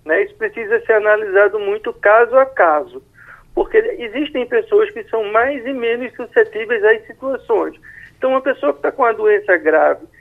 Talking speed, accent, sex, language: 170 wpm, Brazilian, male, Portuguese